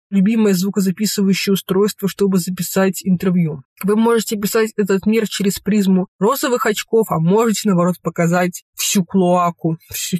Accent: native